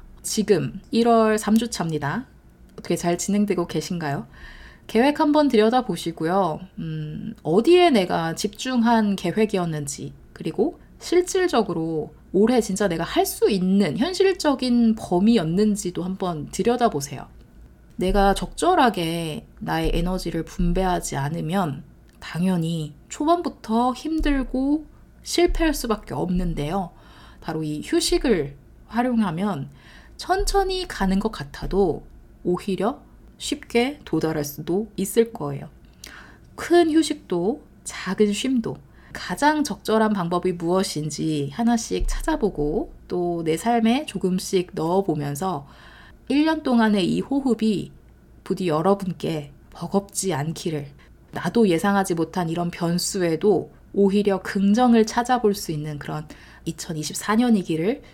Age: 20-39